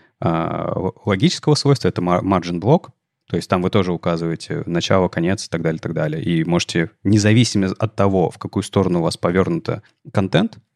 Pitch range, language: 90-115 Hz, Russian